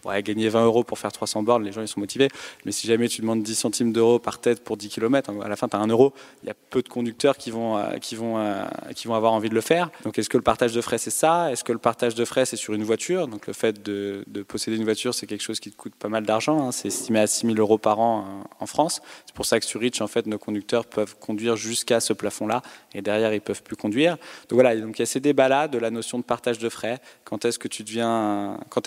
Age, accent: 20-39, French